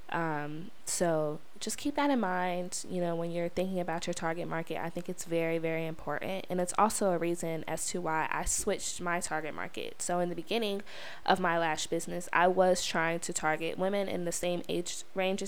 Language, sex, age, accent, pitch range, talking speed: English, female, 20-39, American, 170-195 Hz, 210 wpm